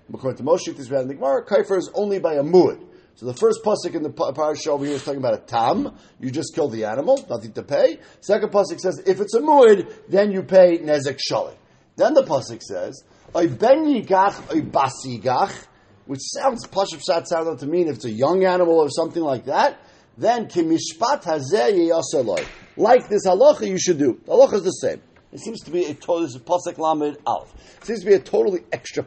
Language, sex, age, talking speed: English, male, 50-69, 200 wpm